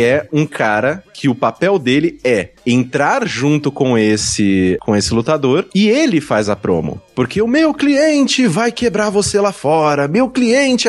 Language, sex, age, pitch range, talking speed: Portuguese, male, 20-39, 110-155 Hz, 170 wpm